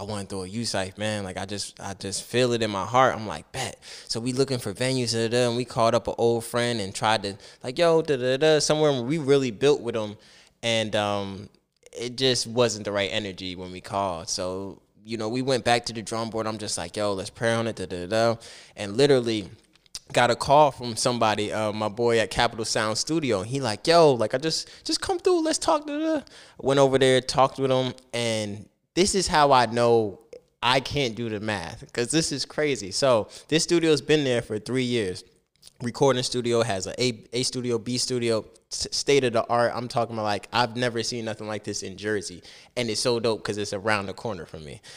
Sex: male